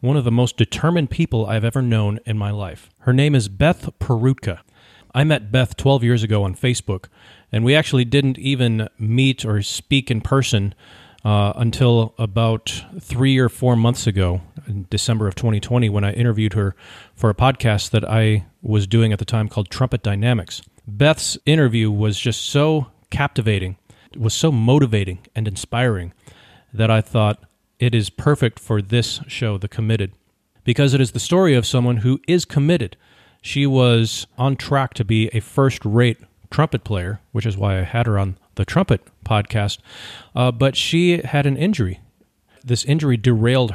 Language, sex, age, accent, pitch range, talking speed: English, male, 40-59, American, 105-130 Hz, 175 wpm